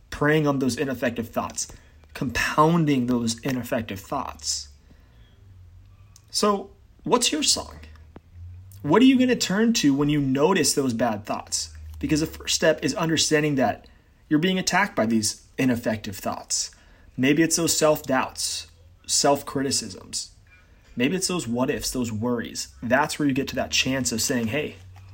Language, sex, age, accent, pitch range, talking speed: English, male, 30-49, American, 95-150 Hz, 145 wpm